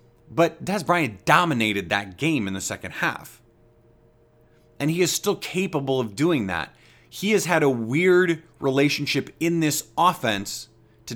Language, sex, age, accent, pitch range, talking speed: English, male, 30-49, American, 115-155 Hz, 150 wpm